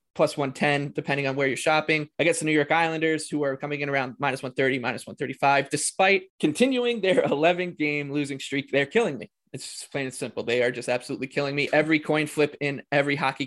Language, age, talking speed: English, 20-39, 215 wpm